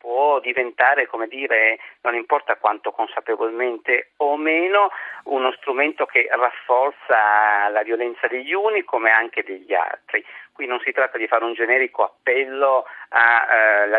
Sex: male